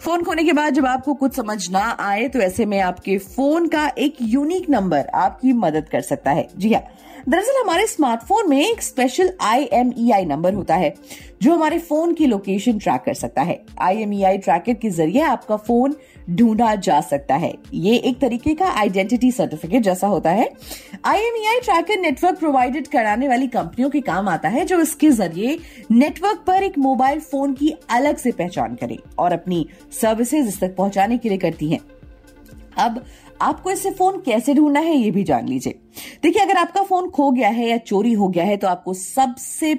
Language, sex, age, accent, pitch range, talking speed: Hindi, female, 30-49, native, 195-305 Hz, 160 wpm